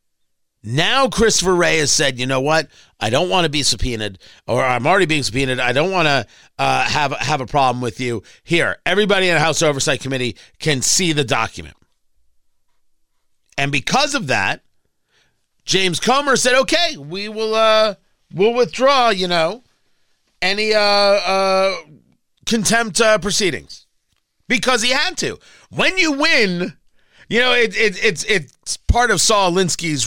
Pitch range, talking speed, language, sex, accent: 140-220 Hz, 160 wpm, English, male, American